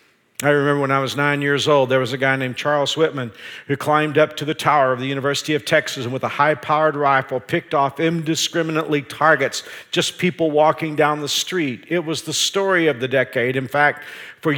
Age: 50-69